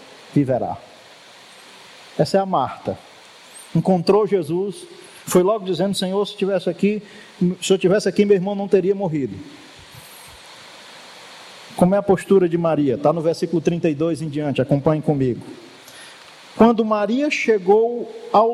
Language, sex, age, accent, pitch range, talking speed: Portuguese, male, 50-69, Brazilian, 190-255 Hz, 135 wpm